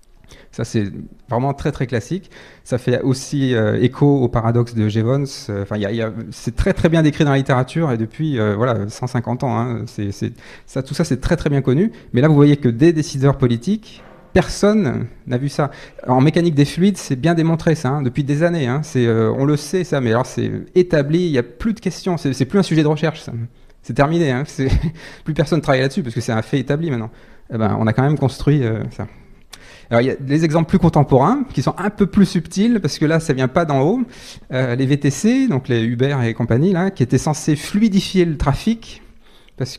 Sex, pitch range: male, 120-160 Hz